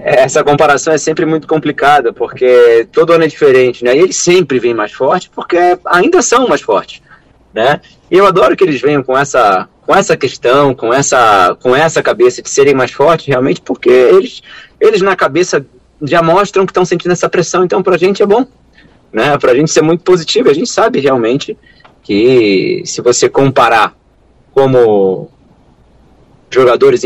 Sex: male